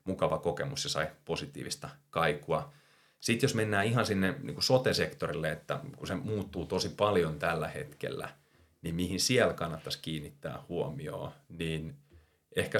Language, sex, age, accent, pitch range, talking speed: Finnish, male, 30-49, native, 80-100 Hz, 130 wpm